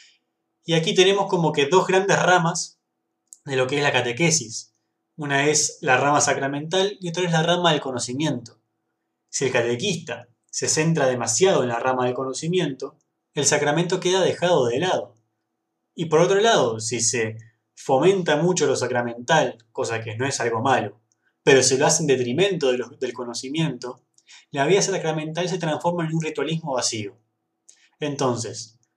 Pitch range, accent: 115-155 Hz, Argentinian